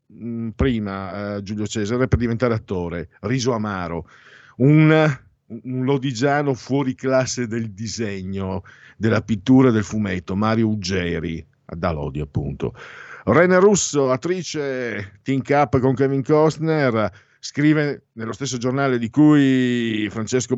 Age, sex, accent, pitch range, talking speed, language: 50-69, male, native, 110-140 Hz, 120 wpm, Italian